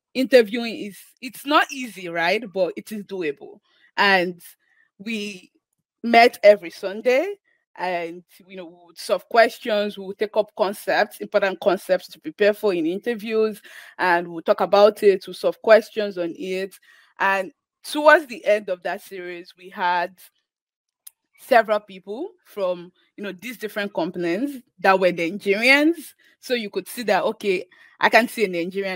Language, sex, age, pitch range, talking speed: English, female, 20-39, 185-255 Hz, 155 wpm